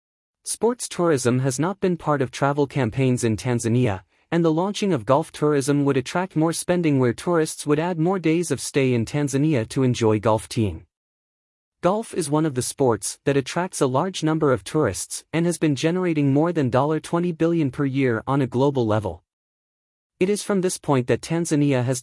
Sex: male